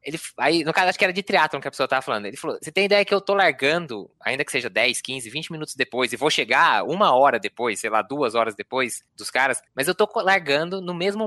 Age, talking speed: 20-39, 260 wpm